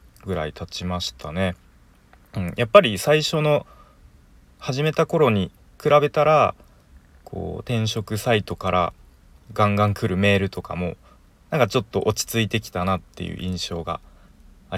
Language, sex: Japanese, male